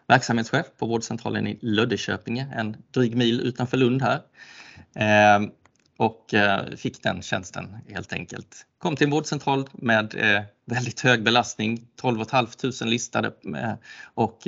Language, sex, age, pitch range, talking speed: Swedish, male, 20-39, 100-120 Hz, 120 wpm